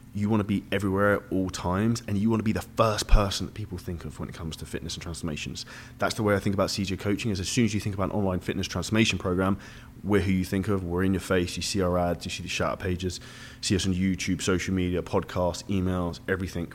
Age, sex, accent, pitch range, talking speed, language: 20-39, male, British, 90-110 Hz, 265 wpm, English